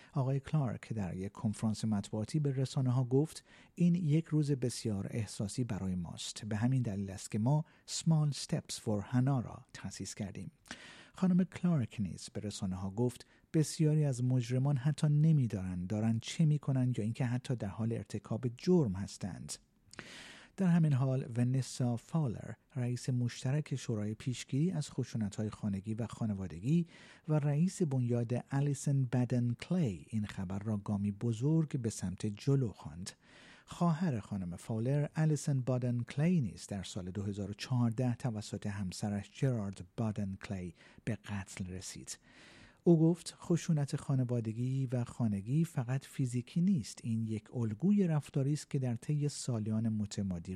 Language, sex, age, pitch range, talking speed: Persian, male, 50-69, 105-145 Hz, 140 wpm